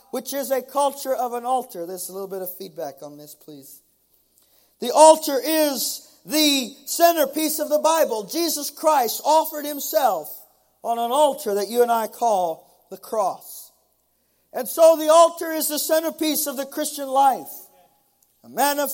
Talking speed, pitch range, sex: 165 wpm, 255-310 Hz, male